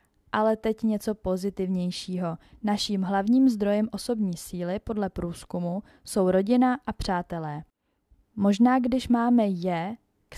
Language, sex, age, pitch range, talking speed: Czech, female, 20-39, 180-220 Hz, 115 wpm